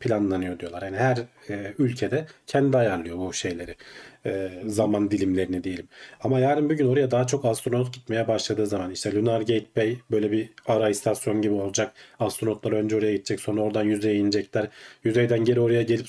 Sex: male